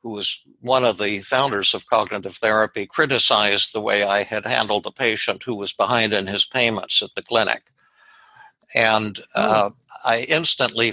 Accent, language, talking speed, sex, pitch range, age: American, English, 165 wpm, male, 105-120 Hz, 60-79